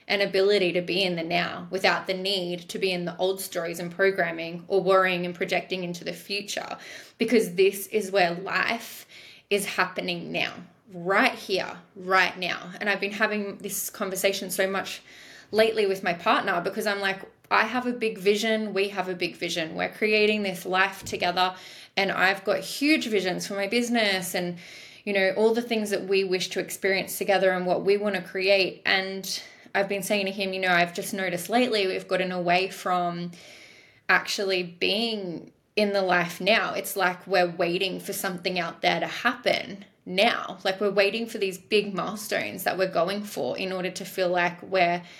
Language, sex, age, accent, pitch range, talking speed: English, female, 20-39, Australian, 180-205 Hz, 190 wpm